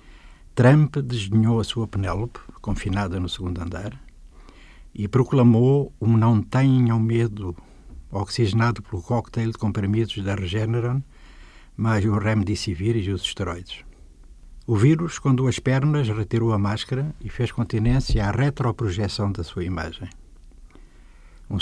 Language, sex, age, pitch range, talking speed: Portuguese, male, 60-79, 95-120 Hz, 120 wpm